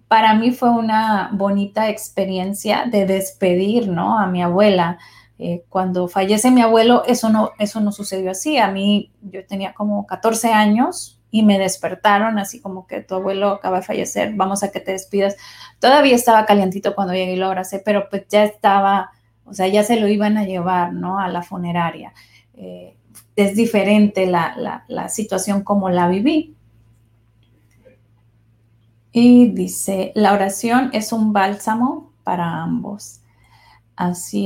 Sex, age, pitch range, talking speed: female, 30-49, 185-215 Hz, 155 wpm